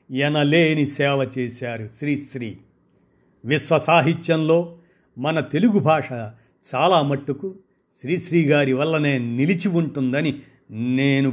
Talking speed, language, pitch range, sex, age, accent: 85 wpm, Telugu, 120-150 Hz, male, 50-69, native